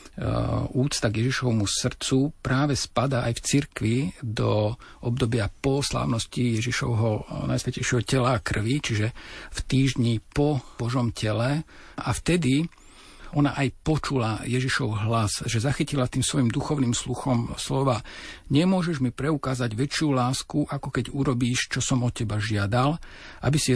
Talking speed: 130 wpm